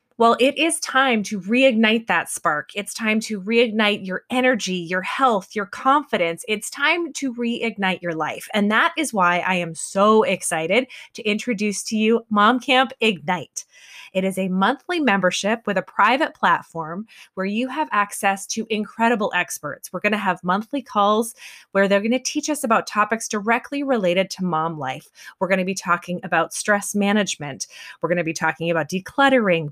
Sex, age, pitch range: female, 20-39, 185-245 Hz